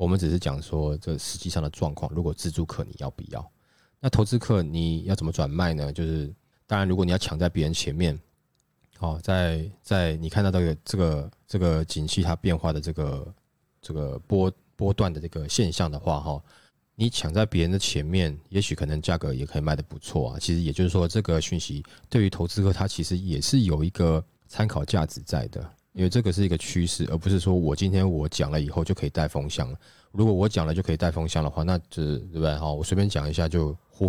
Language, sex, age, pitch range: Chinese, male, 20-39, 80-95 Hz